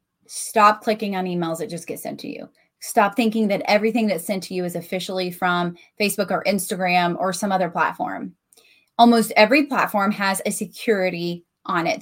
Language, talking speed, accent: English, 180 wpm, American